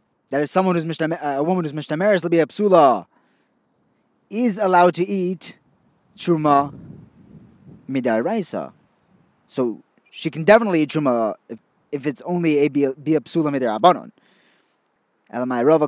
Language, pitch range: English, 135-185 Hz